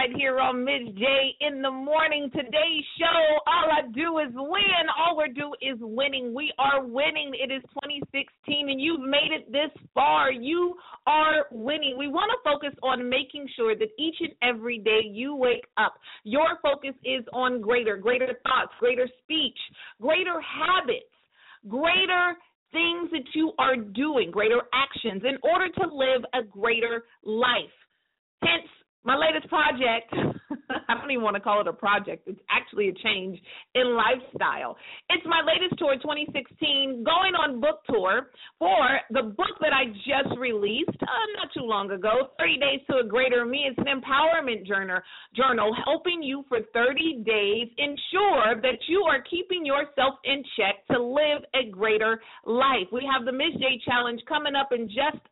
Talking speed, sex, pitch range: 165 wpm, female, 240-315 Hz